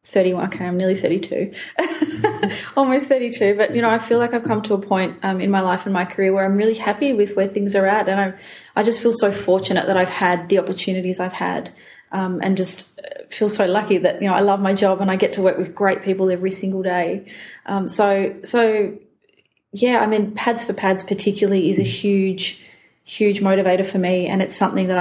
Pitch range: 185-205 Hz